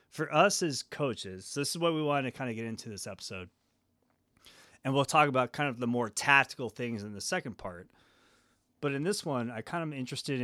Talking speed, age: 225 wpm, 30-49